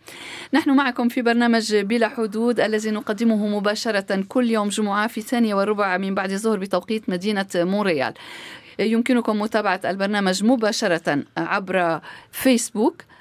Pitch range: 195-240 Hz